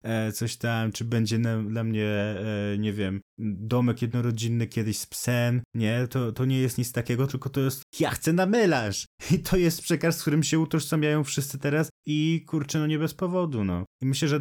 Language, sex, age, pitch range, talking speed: Polish, male, 20-39, 115-140 Hz, 195 wpm